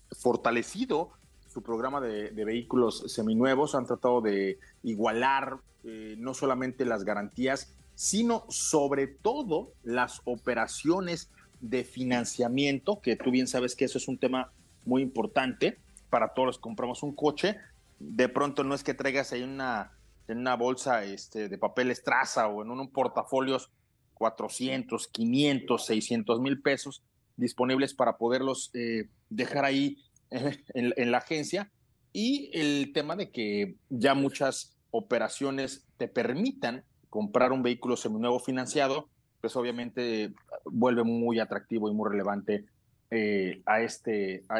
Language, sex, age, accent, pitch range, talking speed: Spanish, male, 30-49, Mexican, 115-140 Hz, 135 wpm